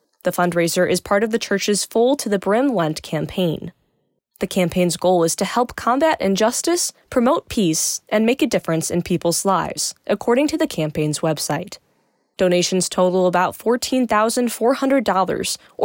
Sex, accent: female, American